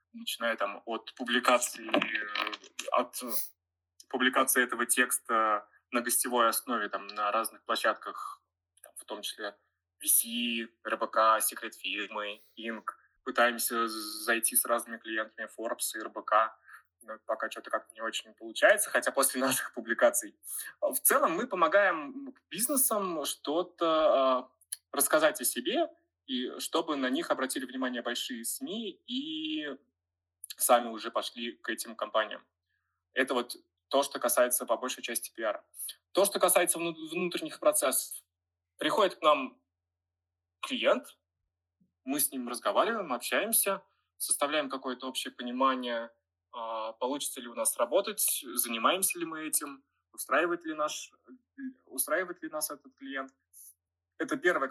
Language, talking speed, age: Russian, 120 wpm, 20-39